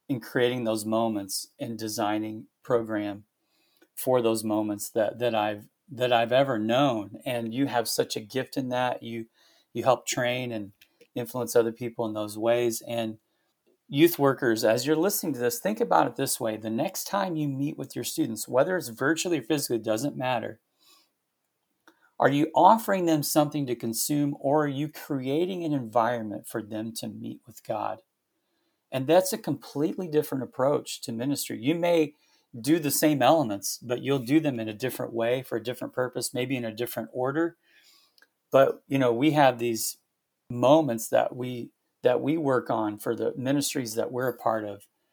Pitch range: 115-145 Hz